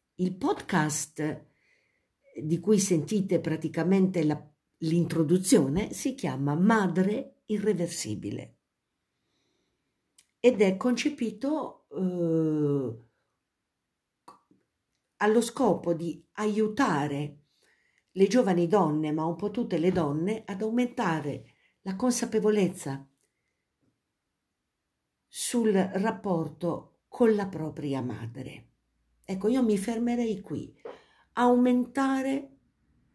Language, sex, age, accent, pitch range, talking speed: Italian, female, 50-69, native, 155-235 Hz, 80 wpm